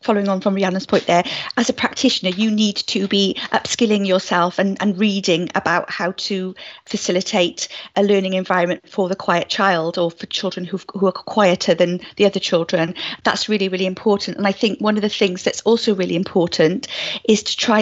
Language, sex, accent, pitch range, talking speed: English, female, British, 190-220 Hz, 195 wpm